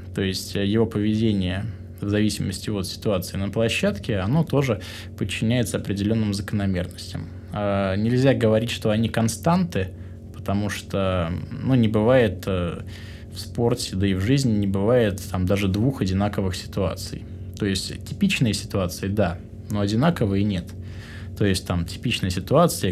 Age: 20-39